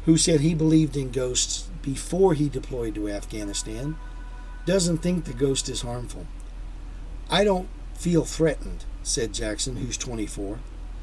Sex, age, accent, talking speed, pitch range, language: male, 50-69, American, 135 wpm, 120-155 Hz, English